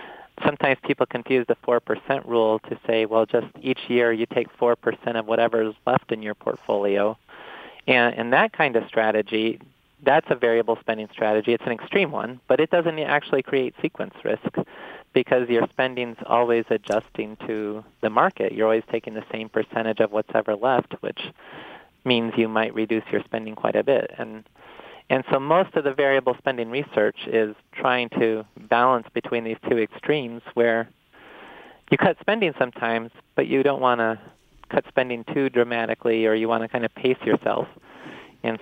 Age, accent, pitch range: 30-49, American, 110-125 Hz